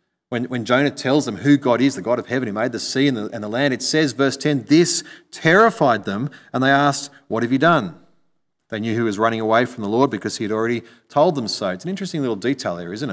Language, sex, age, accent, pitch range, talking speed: English, male, 30-49, Australian, 120-165 Hz, 260 wpm